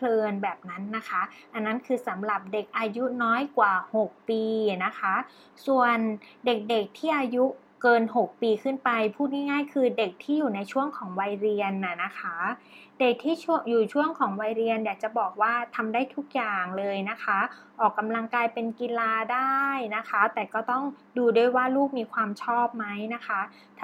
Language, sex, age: Thai, female, 20-39